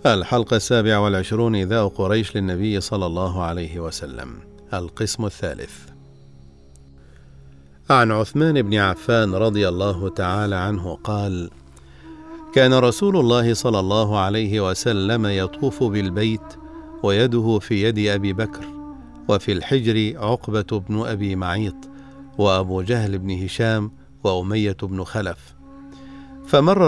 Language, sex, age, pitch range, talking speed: Arabic, male, 50-69, 95-120 Hz, 105 wpm